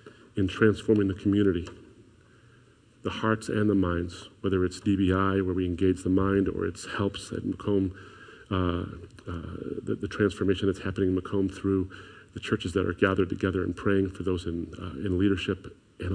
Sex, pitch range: male, 100-125 Hz